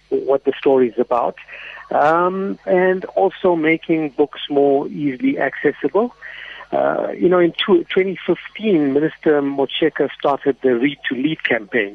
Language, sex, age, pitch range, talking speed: English, male, 50-69, 125-150 Hz, 130 wpm